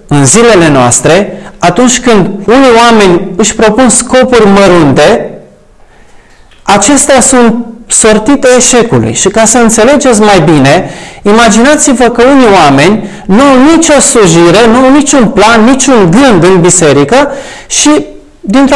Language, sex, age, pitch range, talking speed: Romanian, male, 30-49, 185-255 Hz, 125 wpm